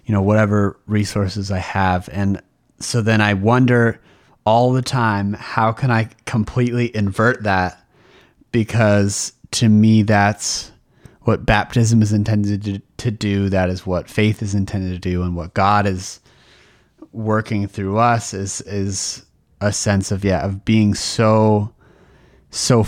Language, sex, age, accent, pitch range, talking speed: English, male, 30-49, American, 95-110 Hz, 145 wpm